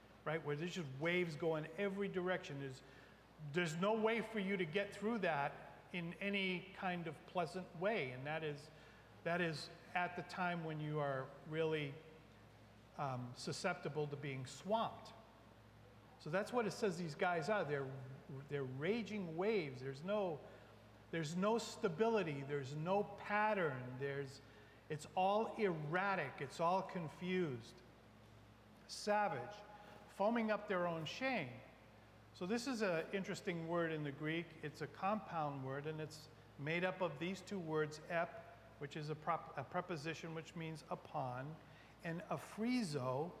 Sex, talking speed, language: male, 150 wpm, English